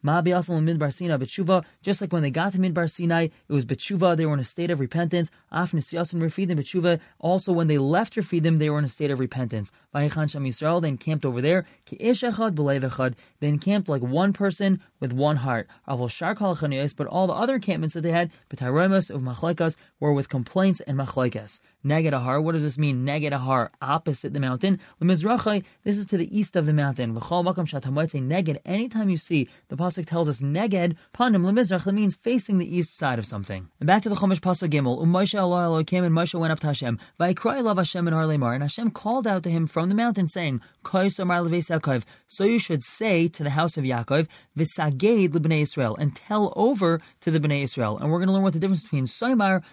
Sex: male